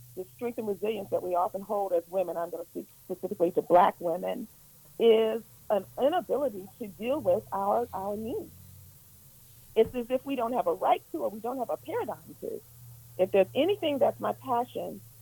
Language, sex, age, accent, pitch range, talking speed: English, female, 40-59, American, 190-280 Hz, 195 wpm